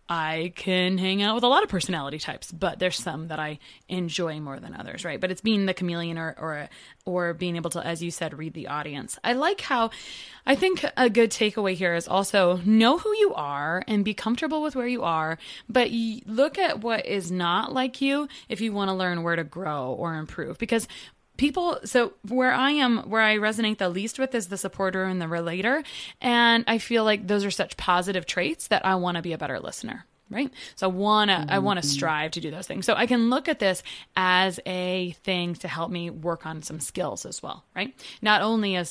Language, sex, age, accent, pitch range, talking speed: English, female, 20-39, American, 170-225 Hz, 230 wpm